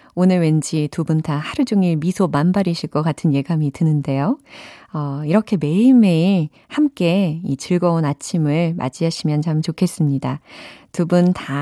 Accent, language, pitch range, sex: native, Korean, 155-245 Hz, female